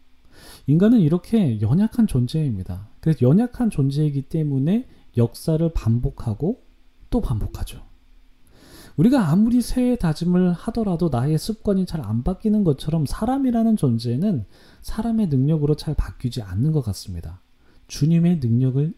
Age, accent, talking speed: 40-59, Korean, 100 wpm